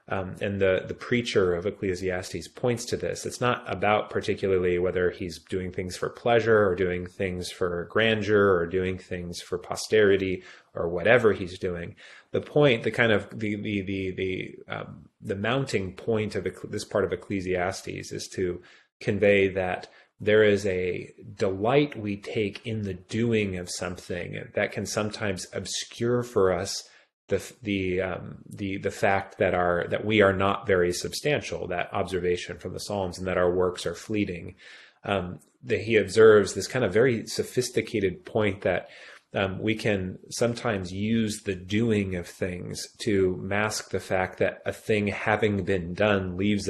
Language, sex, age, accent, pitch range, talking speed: English, male, 30-49, American, 90-105 Hz, 165 wpm